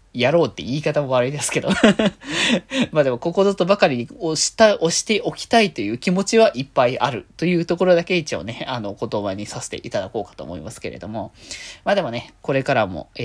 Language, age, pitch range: Japanese, 20-39, 120-180 Hz